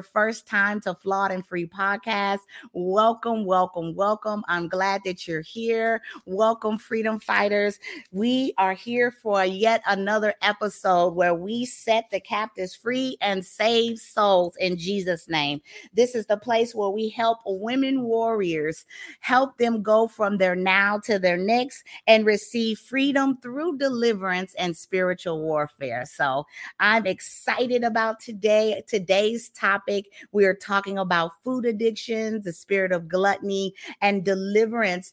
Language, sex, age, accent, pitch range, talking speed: English, female, 30-49, American, 185-225 Hz, 140 wpm